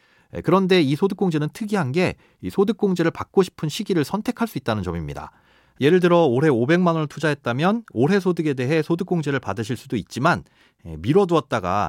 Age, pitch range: 30-49, 115-175 Hz